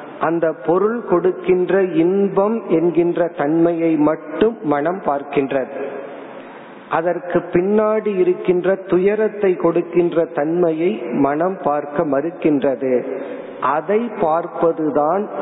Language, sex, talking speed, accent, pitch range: Tamil, male, 45 wpm, native, 150-190 Hz